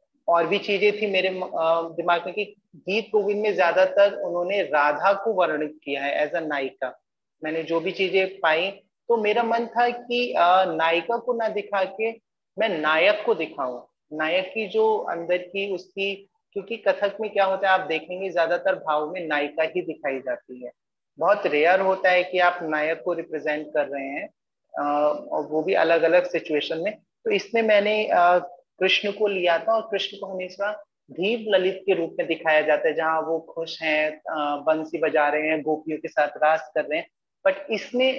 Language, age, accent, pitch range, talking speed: English, 30-49, Indian, 160-210 Hz, 145 wpm